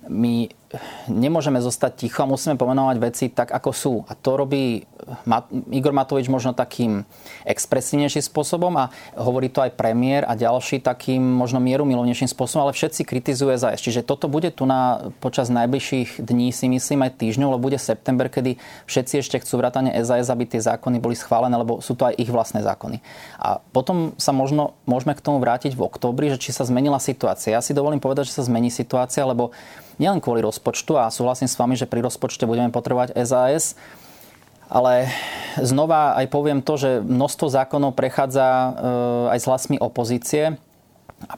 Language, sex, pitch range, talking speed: Slovak, male, 120-140 Hz, 175 wpm